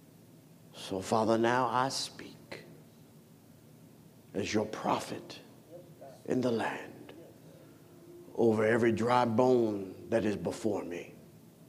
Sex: male